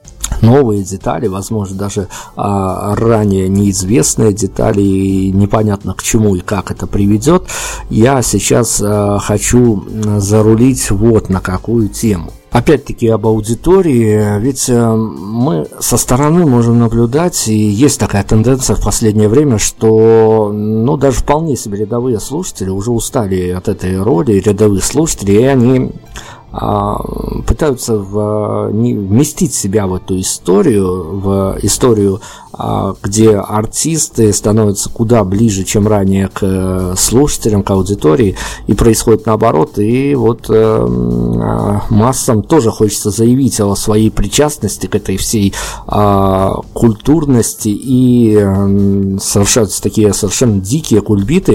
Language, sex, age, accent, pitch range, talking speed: Russian, male, 50-69, native, 100-115 Hz, 120 wpm